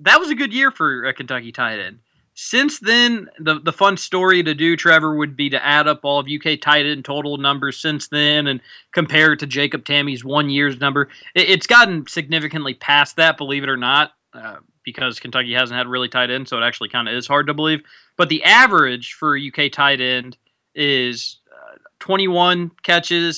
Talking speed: 210 wpm